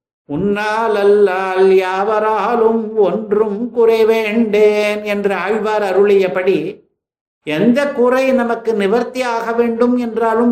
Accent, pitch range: native, 205-245 Hz